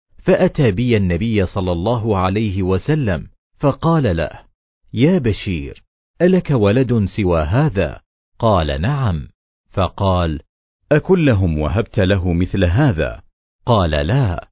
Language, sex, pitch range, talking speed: Arabic, male, 90-125 Hz, 105 wpm